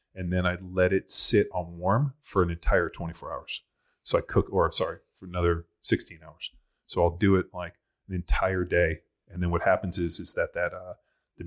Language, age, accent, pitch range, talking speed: English, 30-49, American, 85-100 Hz, 210 wpm